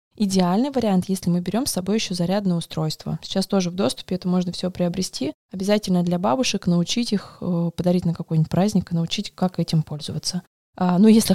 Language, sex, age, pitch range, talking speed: Russian, female, 20-39, 180-215 Hz, 185 wpm